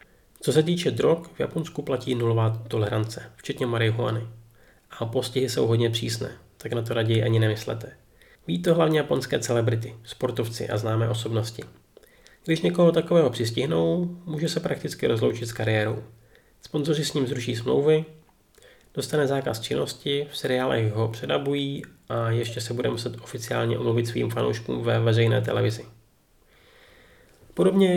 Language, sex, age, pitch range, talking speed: Czech, male, 30-49, 115-140 Hz, 140 wpm